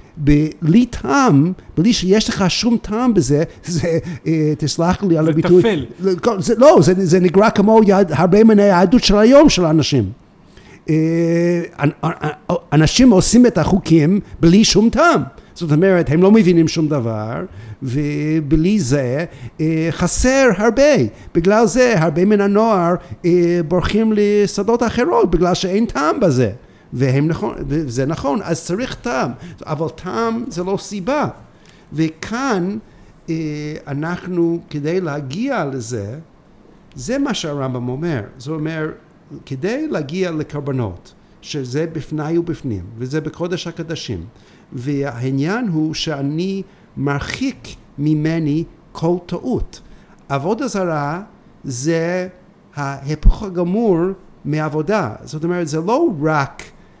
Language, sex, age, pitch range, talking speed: Hebrew, male, 60-79, 150-200 Hz, 110 wpm